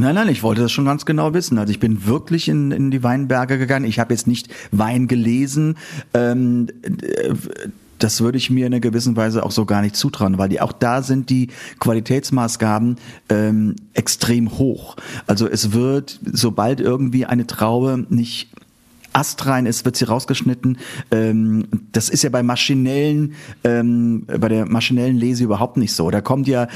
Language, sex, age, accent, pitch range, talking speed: German, male, 40-59, German, 110-135 Hz, 170 wpm